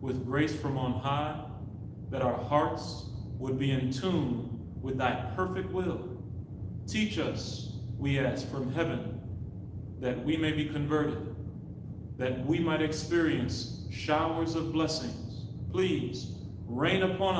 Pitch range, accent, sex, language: 110-150 Hz, American, male, English